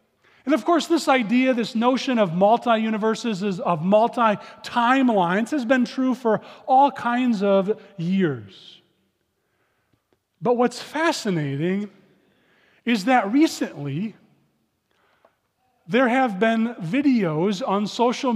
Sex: male